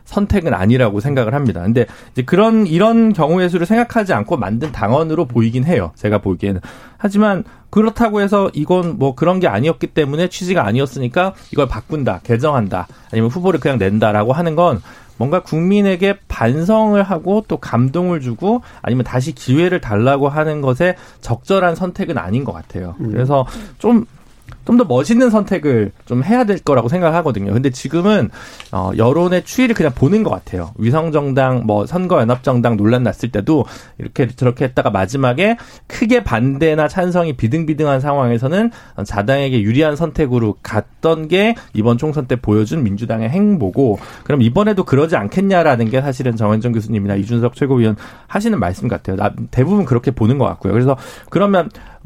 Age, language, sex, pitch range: 40-59, Korean, male, 115-180 Hz